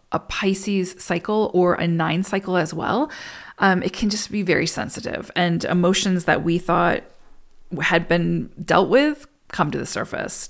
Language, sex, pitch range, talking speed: English, female, 175-215 Hz, 165 wpm